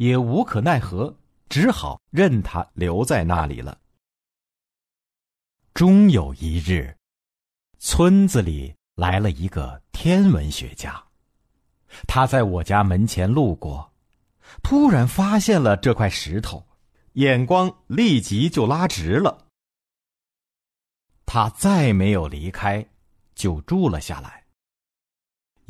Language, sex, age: Chinese, male, 50-69